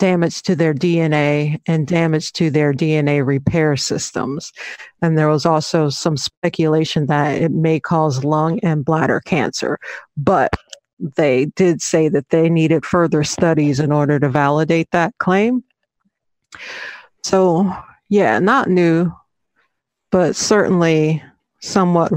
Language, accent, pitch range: English, American, 155-190 Hz